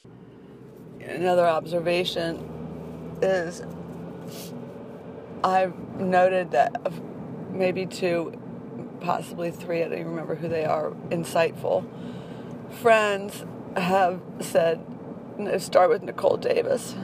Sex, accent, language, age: female, American, English, 40-59